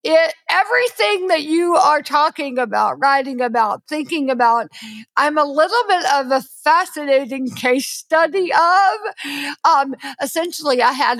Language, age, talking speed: English, 50-69, 135 wpm